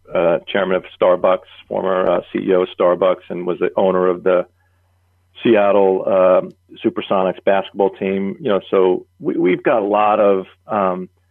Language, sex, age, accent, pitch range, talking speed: English, male, 40-59, American, 95-110 Hz, 160 wpm